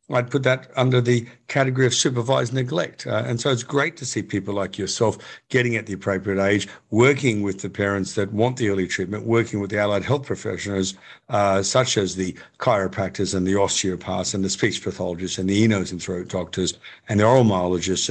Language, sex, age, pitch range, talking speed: English, male, 50-69, 95-130 Hz, 205 wpm